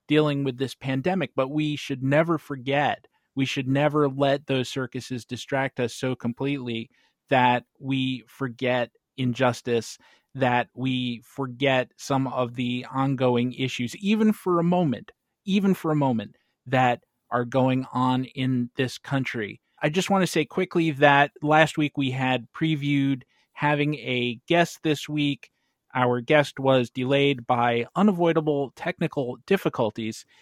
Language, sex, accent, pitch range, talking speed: English, male, American, 125-150 Hz, 140 wpm